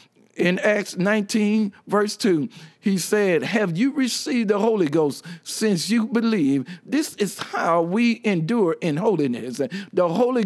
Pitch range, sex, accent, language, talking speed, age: 160-220 Hz, male, American, English, 145 wpm, 50-69